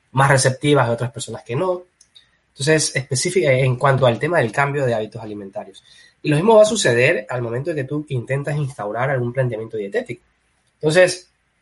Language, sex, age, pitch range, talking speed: Spanish, male, 20-39, 125-155 Hz, 180 wpm